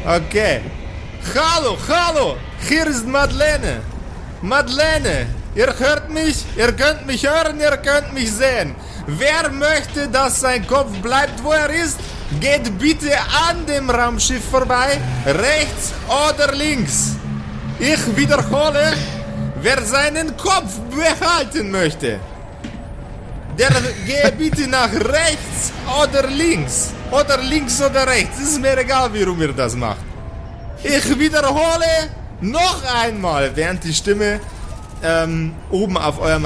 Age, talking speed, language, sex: 30-49, 120 wpm, German, male